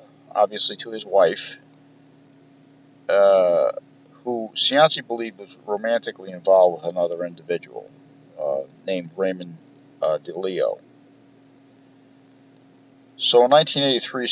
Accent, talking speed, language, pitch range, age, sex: American, 90 wpm, English, 110-140 Hz, 50-69, male